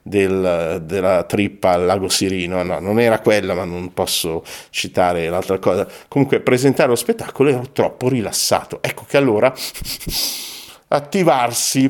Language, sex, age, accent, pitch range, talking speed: Italian, male, 50-69, native, 105-140 Hz, 135 wpm